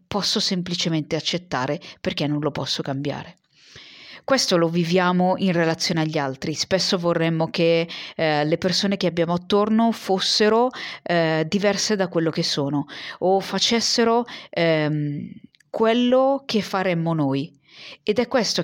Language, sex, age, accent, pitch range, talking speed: Italian, female, 40-59, native, 155-205 Hz, 130 wpm